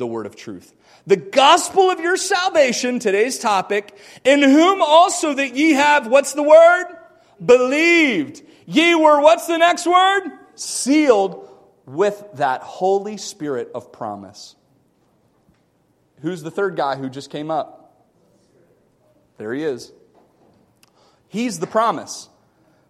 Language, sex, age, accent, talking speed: English, male, 40-59, American, 125 wpm